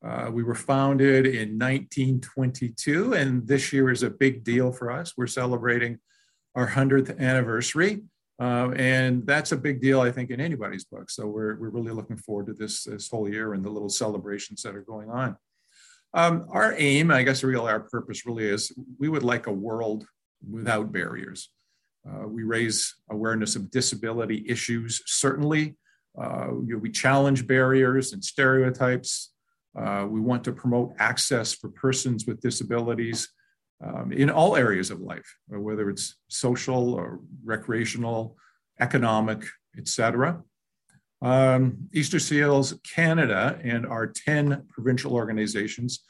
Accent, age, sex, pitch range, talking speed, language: American, 50-69, male, 115-135 Hz, 150 wpm, English